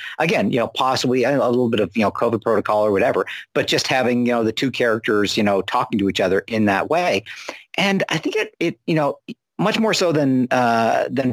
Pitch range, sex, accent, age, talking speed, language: 110-130 Hz, male, American, 50-69, 235 wpm, English